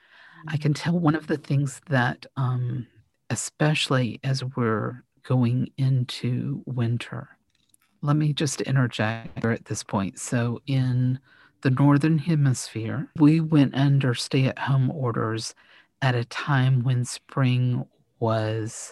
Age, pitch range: 50-69, 125-145 Hz